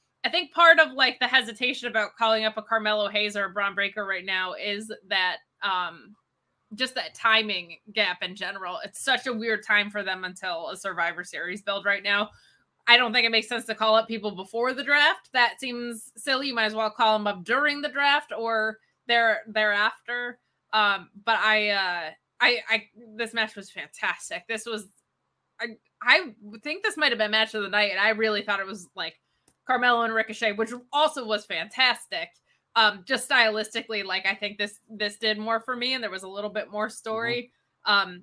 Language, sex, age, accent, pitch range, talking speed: English, female, 20-39, American, 205-240 Hz, 200 wpm